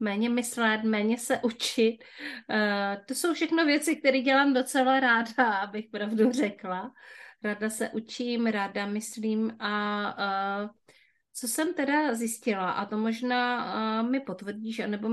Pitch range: 195-235 Hz